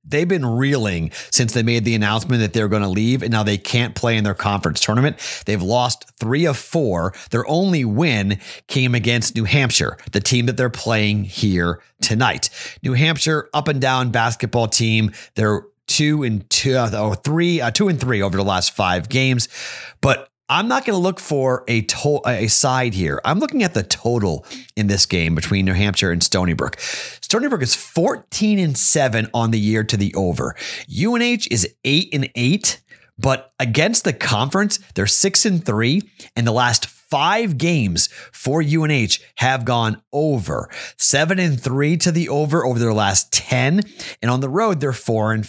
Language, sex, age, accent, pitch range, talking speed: English, male, 30-49, American, 110-150 Hz, 185 wpm